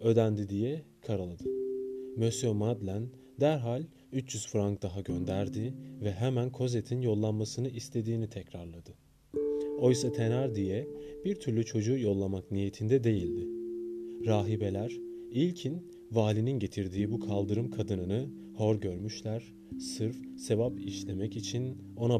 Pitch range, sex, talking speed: 100-130 Hz, male, 105 wpm